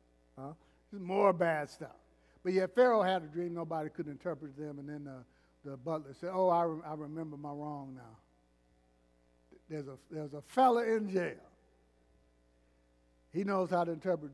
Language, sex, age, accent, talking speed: English, male, 60-79, American, 175 wpm